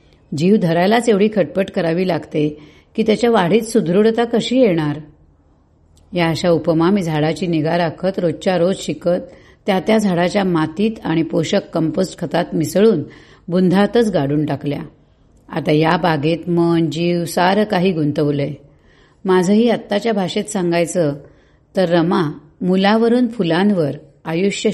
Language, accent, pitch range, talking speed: Marathi, native, 155-195 Hz, 125 wpm